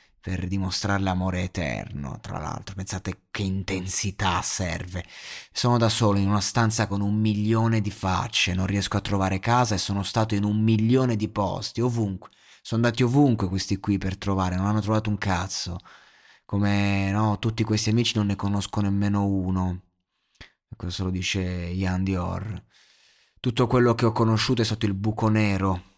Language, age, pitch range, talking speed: Italian, 20-39, 95-110 Hz, 165 wpm